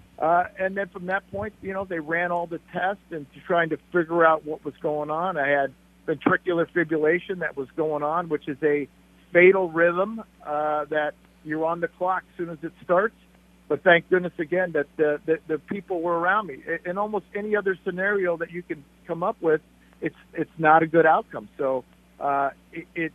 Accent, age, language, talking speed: American, 50-69, English, 200 wpm